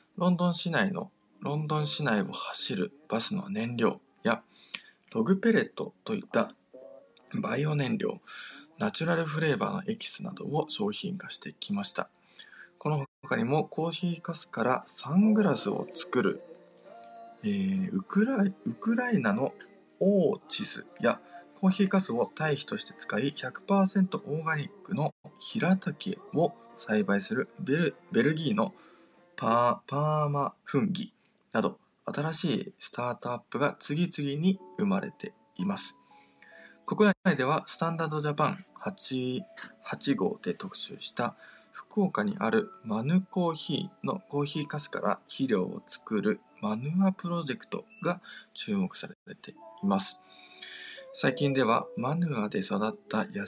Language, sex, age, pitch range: Japanese, male, 20-39, 145-200 Hz